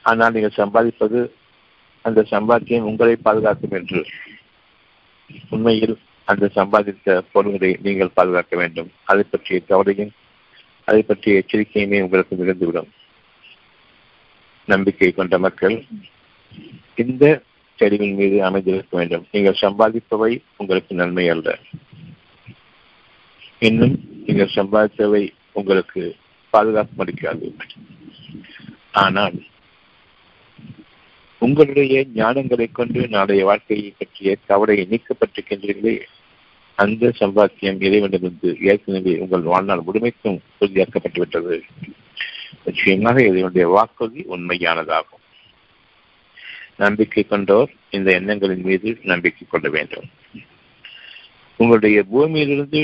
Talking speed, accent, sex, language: 80 wpm, native, male, Tamil